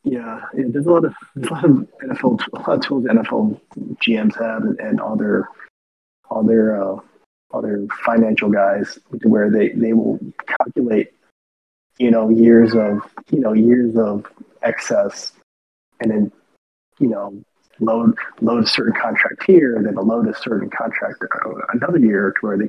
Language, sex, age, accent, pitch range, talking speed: English, male, 30-49, American, 105-170 Hz, 160 wpm